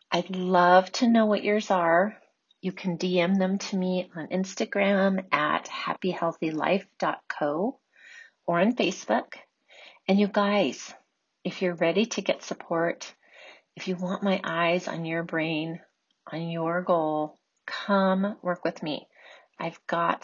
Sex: female